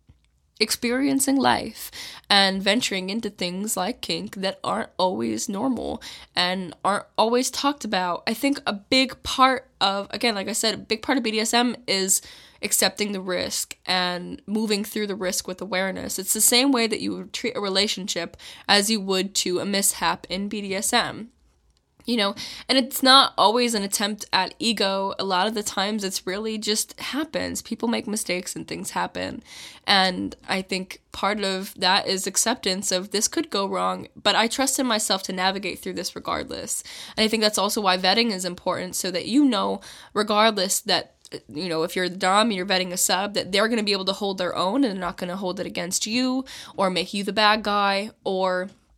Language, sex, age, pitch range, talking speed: English, female, 10-29, 190-230 Hz, 195 wpm